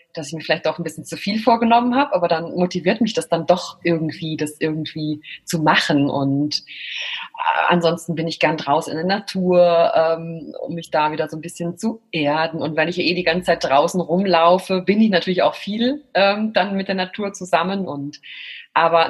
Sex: female